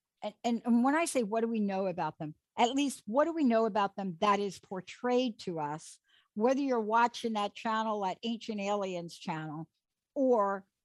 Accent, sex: American, female